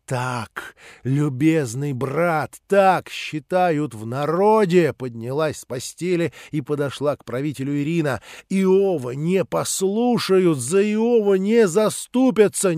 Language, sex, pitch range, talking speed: Russian, male, 145-205 Hz, 105 wpm